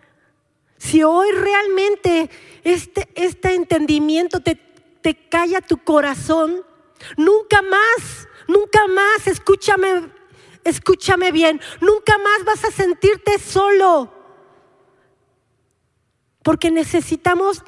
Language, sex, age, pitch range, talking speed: Spanish, female, 40-59, 300-370 Hz, 90 wpm